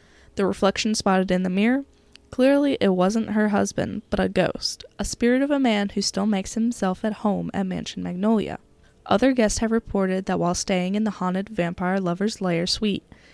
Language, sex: English, female